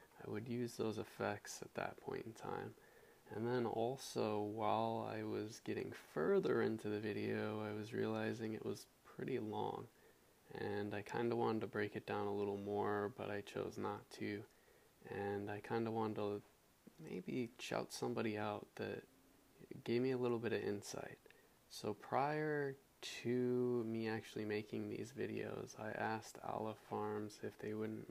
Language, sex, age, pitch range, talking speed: English, male, 20-39, 105-110 Hz, 165 wpm